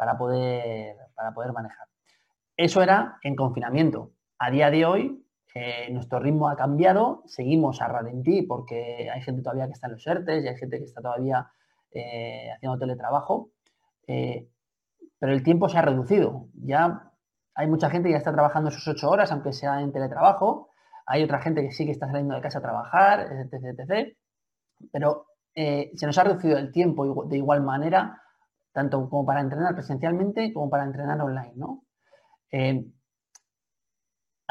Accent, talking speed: Spanish, 170 wpm